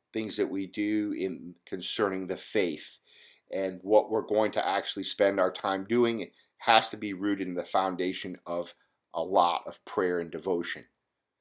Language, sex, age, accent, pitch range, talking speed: English, male, 50-69, American, 95-120 Hz, 170 wpm